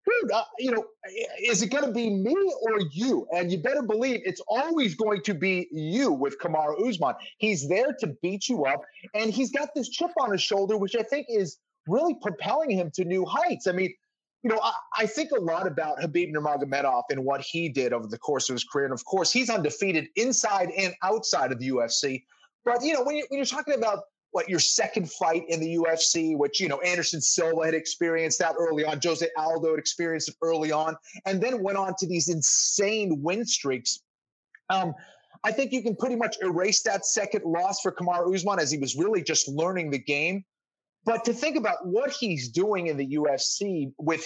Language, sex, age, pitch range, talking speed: English, male, 30-49, 155-215 Hz, 210 wpm